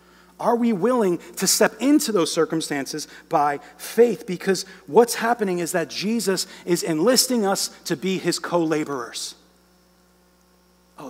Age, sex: 40-59, male